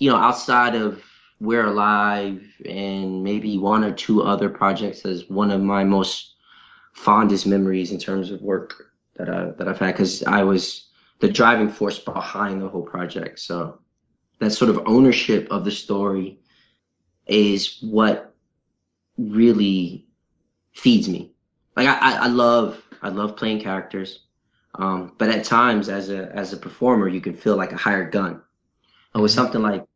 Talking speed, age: 160 wpm, 20-39